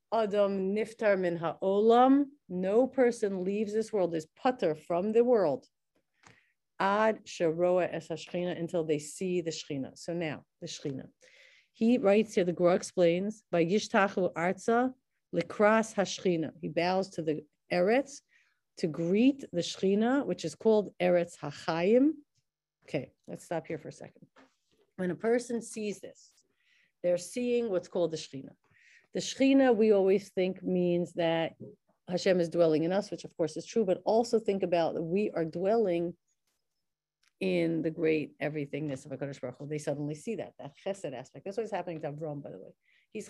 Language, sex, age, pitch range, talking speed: English, female, 40-59, 170-225 Hz, 165 wpm